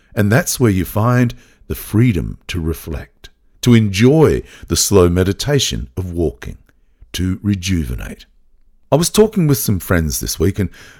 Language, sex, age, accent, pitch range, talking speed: English, male, 50-69, Australian, 85-115 Hz, 145 wpm